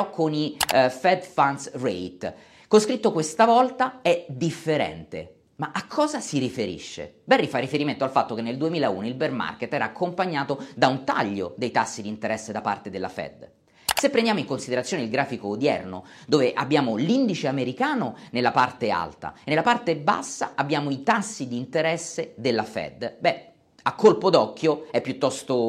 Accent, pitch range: native, 125-185 Hz